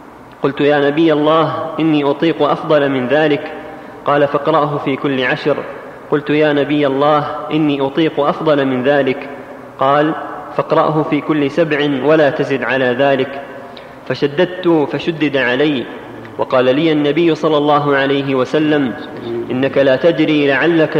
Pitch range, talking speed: 135-155 Hz, 130 wpm